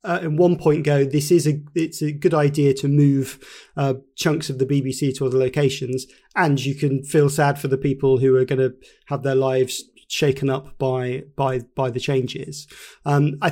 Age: 30-49